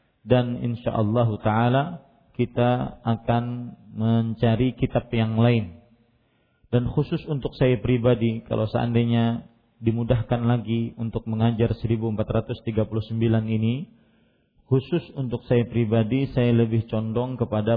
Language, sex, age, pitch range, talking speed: Malay, male, 40-59, 110-125 Hz, 100 wpm